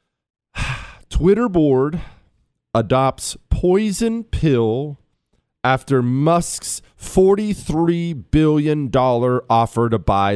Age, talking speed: 40-59, 70 wpm